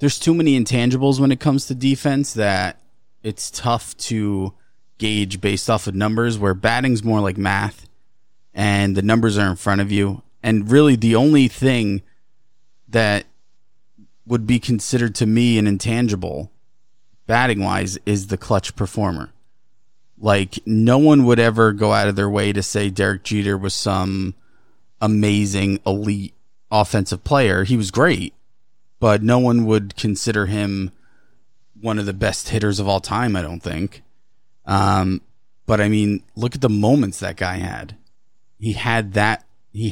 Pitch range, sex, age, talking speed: 100-125 Hz, male, 30-49, 155 wpm